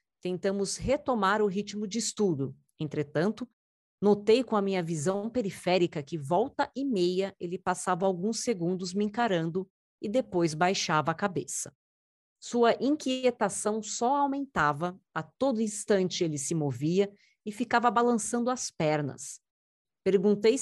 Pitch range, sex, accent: 175-230 Hz, female, Brazilian